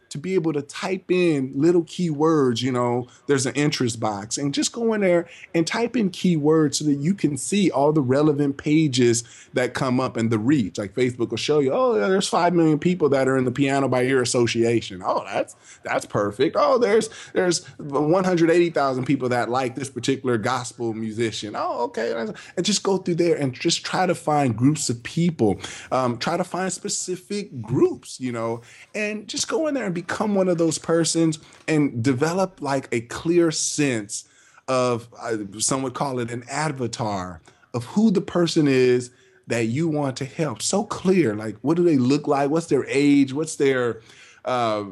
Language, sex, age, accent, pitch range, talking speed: English, male, 20-39, American, 125-165 Hz, 190 wpm